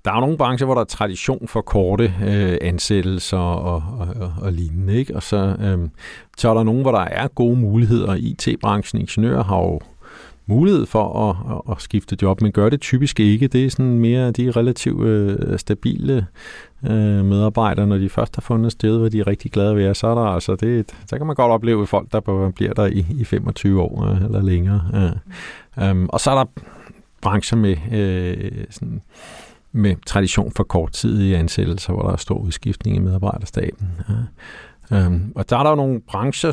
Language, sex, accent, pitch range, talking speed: Danish, male, native, 95-115 Hz, 205 wpm